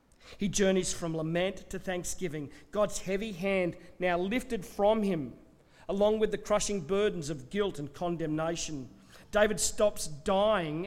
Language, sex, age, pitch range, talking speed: English, male, 40-59, 140-180 Hz, 140 wpm